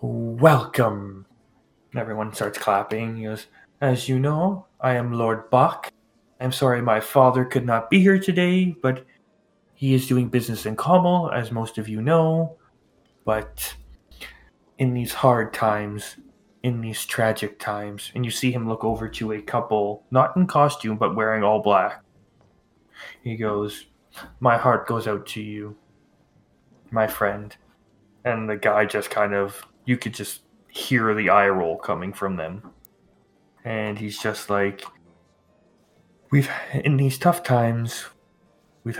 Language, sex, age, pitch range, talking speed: English, male, 20-39, 105-130 Hz, 145 wpm